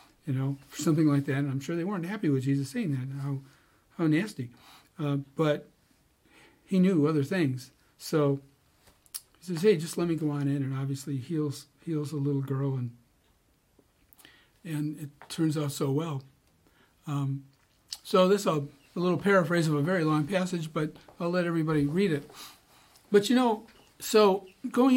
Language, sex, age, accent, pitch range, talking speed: English, male, 60-79, American, 145-190 Hz, 175 wpm